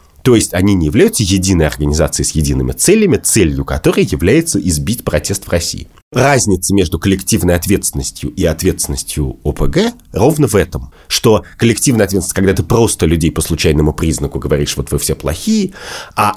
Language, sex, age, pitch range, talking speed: Russian, male, 30-49, 80-115 Hz, 160 wpm